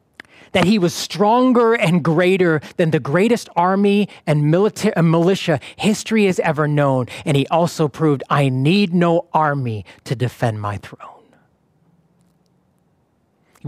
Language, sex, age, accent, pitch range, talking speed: English, male, 30-49, American, 140-200 Hz, 135 wpm